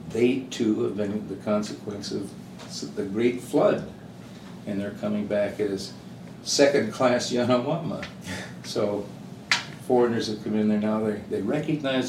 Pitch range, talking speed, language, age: 100-120 Hz, 130 wpm, English, 60-79